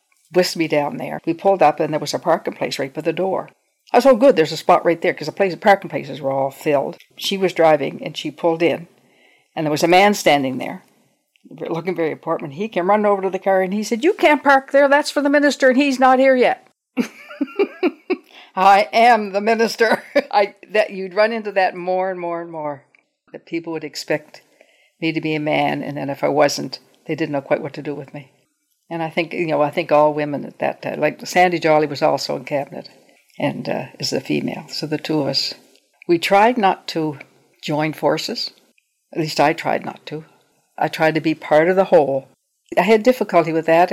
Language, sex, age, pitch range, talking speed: English, female, 60-79, 155-205 Hz, 225 wpm